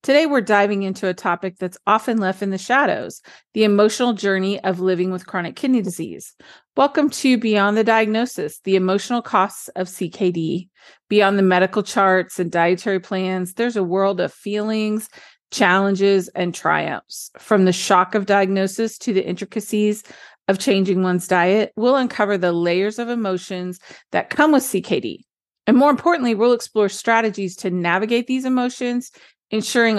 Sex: female